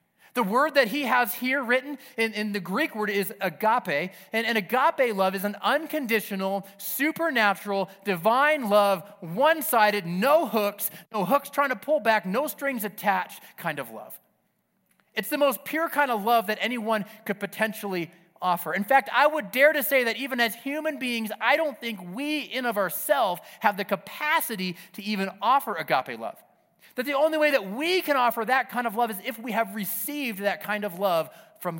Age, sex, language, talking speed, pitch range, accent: 30-49, male, Hindi, 190 wpm, 195-260 Hz, American